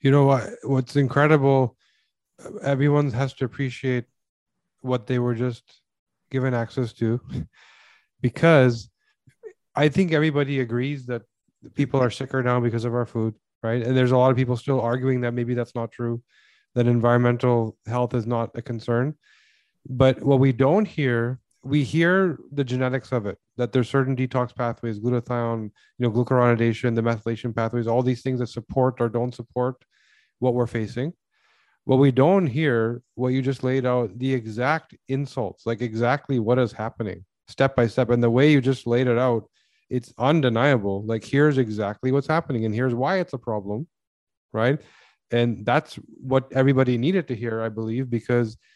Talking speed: 170 wpm